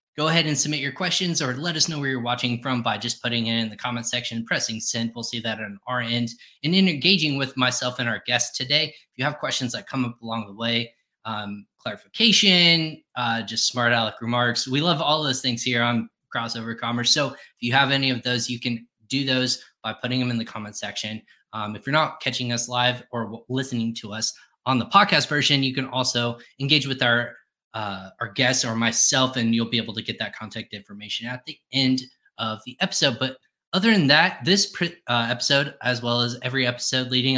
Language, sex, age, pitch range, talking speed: English, male, 20-39, 115-135 Hz, 220 wpm